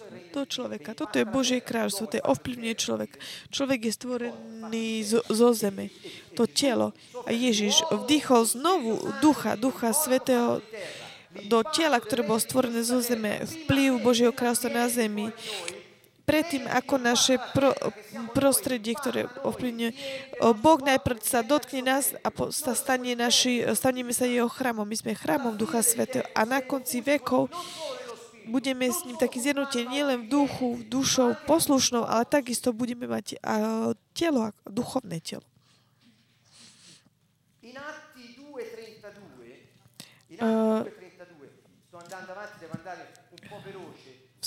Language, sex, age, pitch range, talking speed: Slovak, female, 20-39, 210-260 Hz, 115 wpm